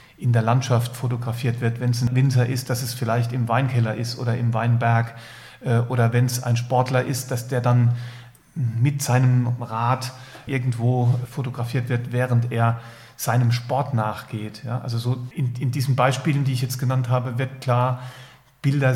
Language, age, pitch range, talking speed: German, 40-59, 120-130 Hz, 170 wpm